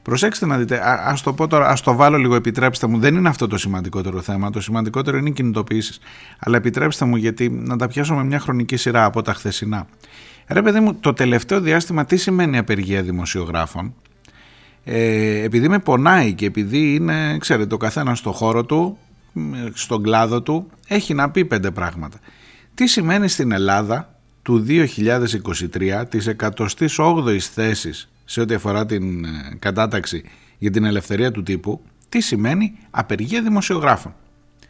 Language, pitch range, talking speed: Greek, 105-150 Hz, 150 wpm